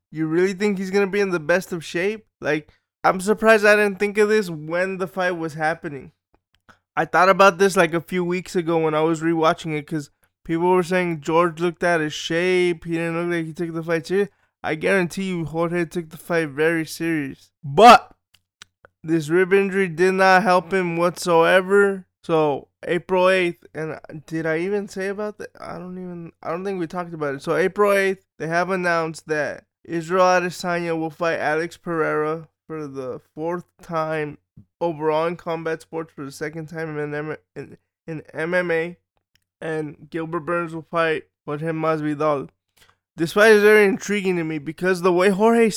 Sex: male